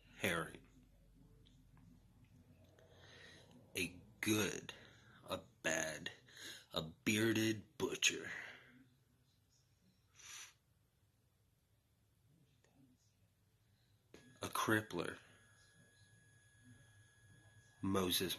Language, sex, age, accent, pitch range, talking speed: English, male, 30-49, American, 100-125 Hz, 35 wpm